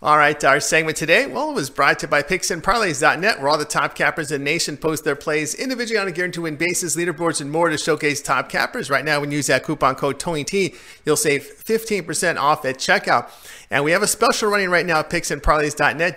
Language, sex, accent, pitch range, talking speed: English, male, American, 145-180 Hz, 230 wpm